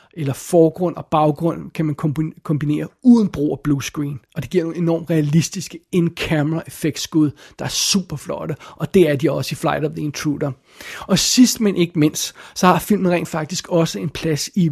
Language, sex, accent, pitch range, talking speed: Danish, male, native, 155-185 Hz, 200 wpm